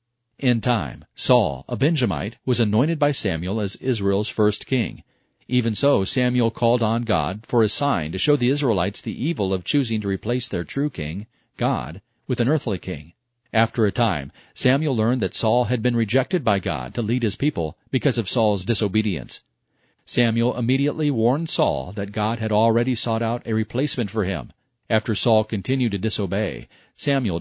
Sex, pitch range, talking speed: male, 100-125 Hz, 175 wpm